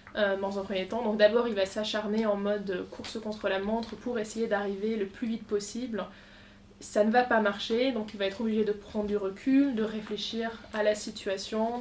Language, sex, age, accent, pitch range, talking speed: French, female, 20-39, French, 200-230 Hz, 215 wpm